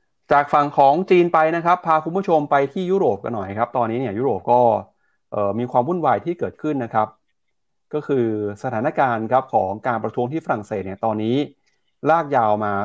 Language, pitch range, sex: Thai, 110-140 Hz, male